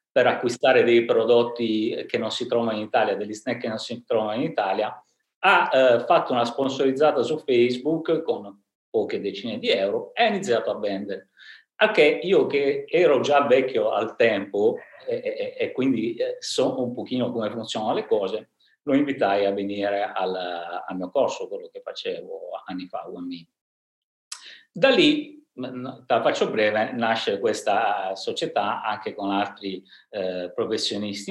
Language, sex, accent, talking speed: Italian, male, native, 150 wpm